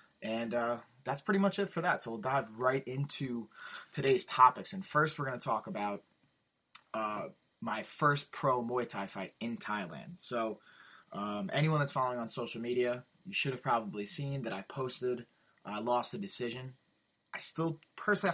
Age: 20-39